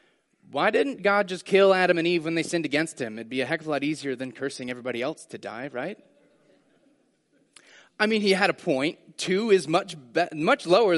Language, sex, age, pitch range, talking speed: English, male, 30-49, 135-185 Hz, 220 wpm